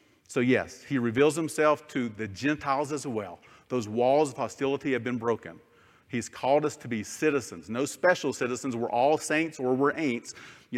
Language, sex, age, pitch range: English, male, 40-59, 125-150 Hz